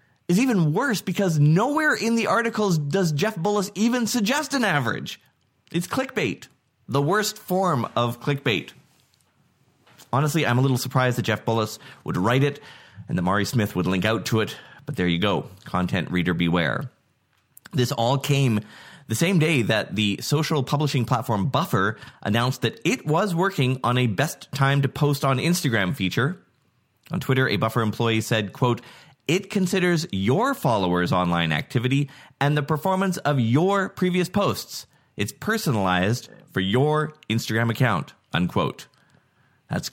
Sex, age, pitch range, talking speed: male, 20-39, 110-170 Hz, 155 wpm